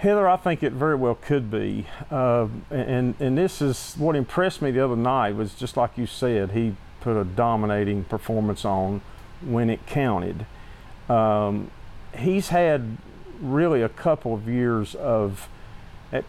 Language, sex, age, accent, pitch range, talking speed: English, male, 50-69, American, 105-135 Hz, 160 wpm